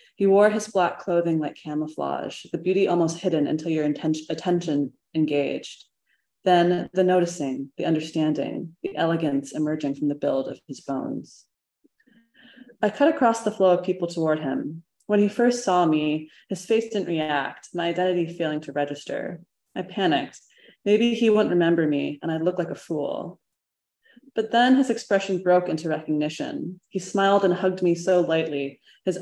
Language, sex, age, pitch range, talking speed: English, female, 20-39, 155-195 Hz, 165 wpm